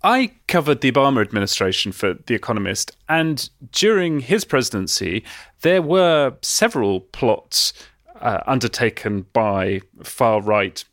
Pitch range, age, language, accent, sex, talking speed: 110-145 Hz, 30-49, English, British, male, 110 wpm